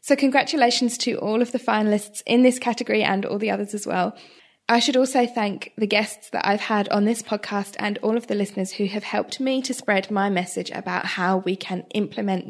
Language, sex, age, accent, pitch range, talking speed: English, female, 10-29, British, 190-245 Hz, 220 wpm